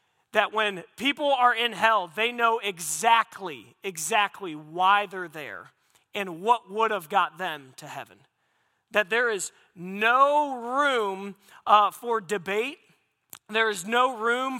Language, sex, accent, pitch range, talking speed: English, male, American, 195-240 Hz, 140 wpm